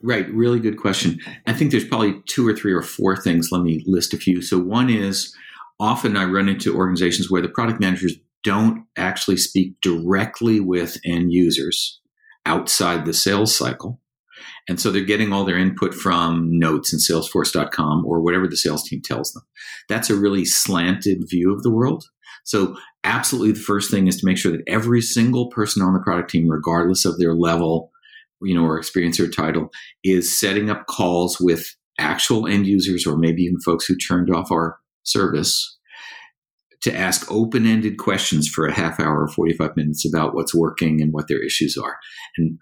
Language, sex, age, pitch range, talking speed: English, male, 50-69, 85-105 Hz, 185 wpm